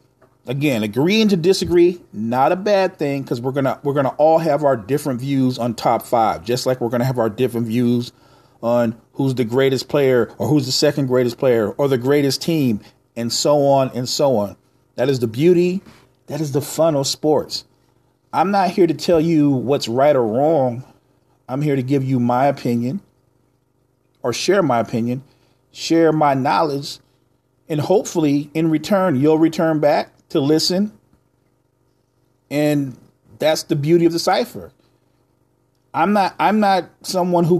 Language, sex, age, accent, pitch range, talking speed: English, male, 40-59, American, 125-155 Hz, 170 wpm